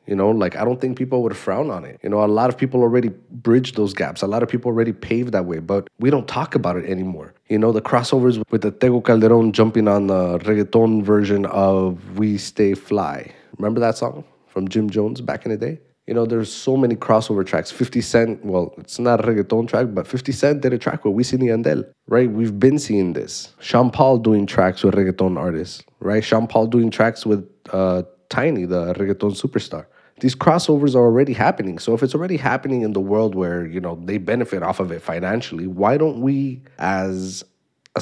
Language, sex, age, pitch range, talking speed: English, male, 20-39, 100-125 Hz, 220 wpm